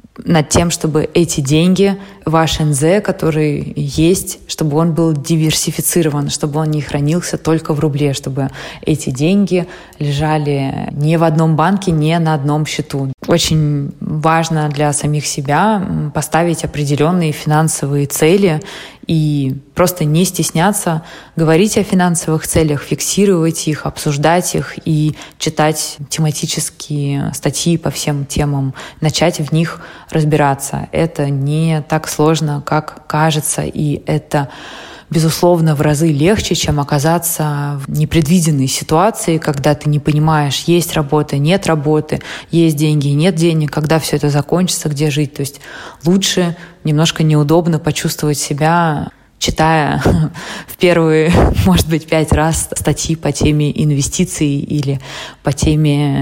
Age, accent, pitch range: 20-39, native, 150-165 Hz